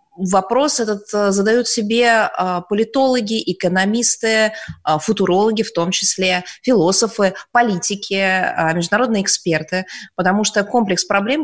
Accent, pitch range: native, 175-230 Hz